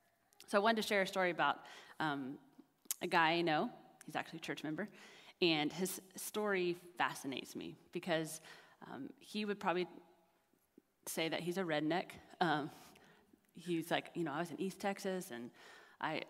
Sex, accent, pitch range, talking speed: female, American, 170-200 Hz, 165 wpm